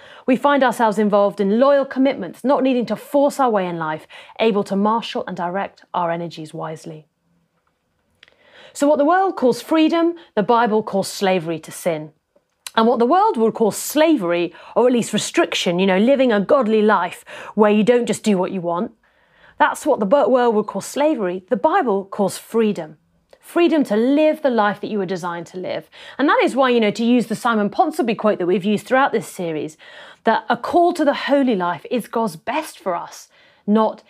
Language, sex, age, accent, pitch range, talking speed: English, female, 30-49, British, 185-255 Hz, 200 wpm